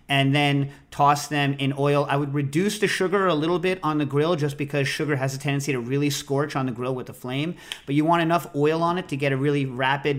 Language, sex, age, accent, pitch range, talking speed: English, male, 40-59, American, 135-150 Hz, 260 wpm